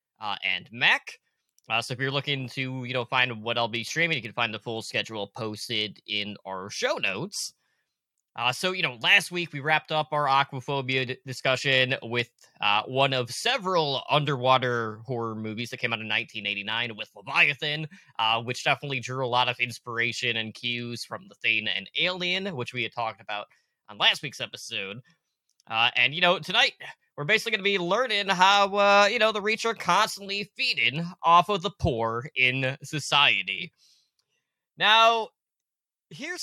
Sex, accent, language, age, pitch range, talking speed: male, American, English, 20-39, 120-170 Hz, 175 wpm